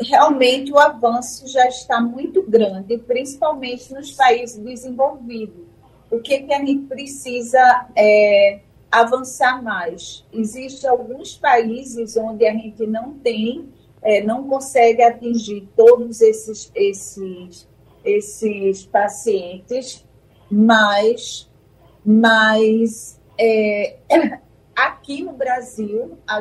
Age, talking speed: 40-59, 90 wpm